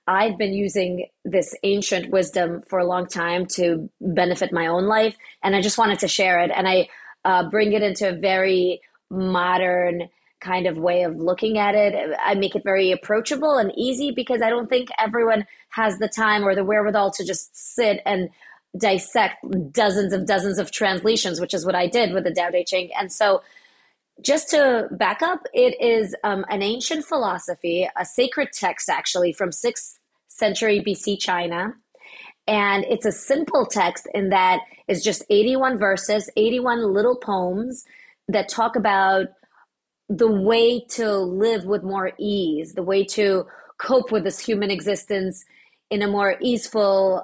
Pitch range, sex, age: 185-225 Hz, female, 30-49